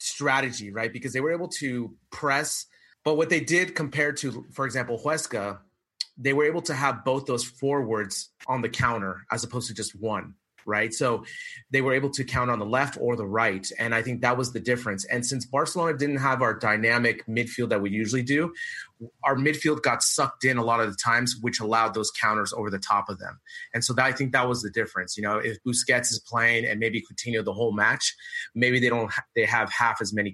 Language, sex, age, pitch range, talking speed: English, male, 30-49, 110-130 Hz, 225 wpm